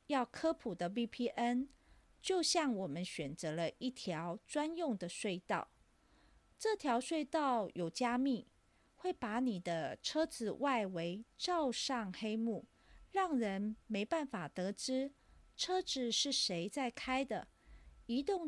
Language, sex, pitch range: Chinese, female, 195-270 Hz